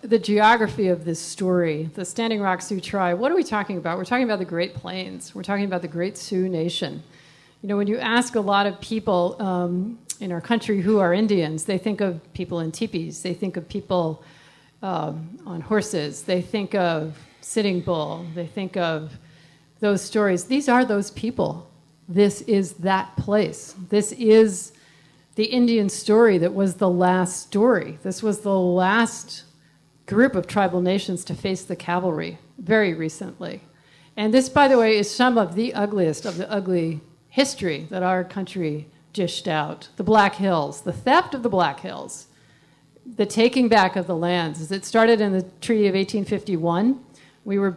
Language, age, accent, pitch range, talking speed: English, 40-59, American, 175-215 Hz, 180 wpm